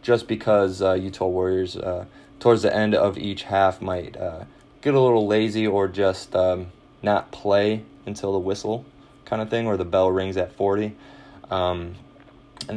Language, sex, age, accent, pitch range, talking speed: English, male, 20-39, American, 95-110 Hz, 175 wpm